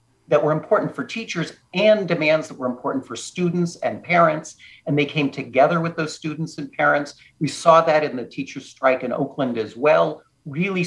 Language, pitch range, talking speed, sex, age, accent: English, 140-185 Hz, 195 wpm, male, 50-69, American